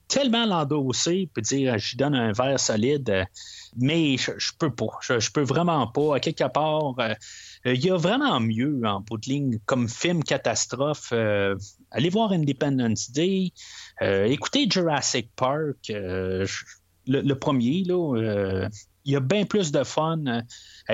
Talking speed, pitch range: 165 wpm, 115-155 Hz